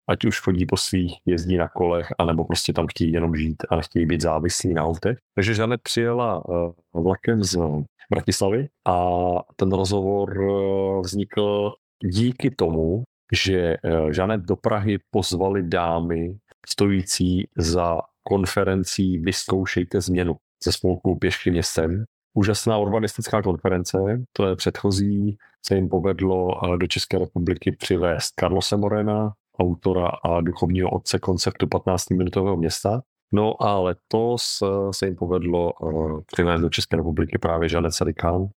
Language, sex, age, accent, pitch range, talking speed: Czech, male, 40-59, native, 90-105 Hz, 130 wpm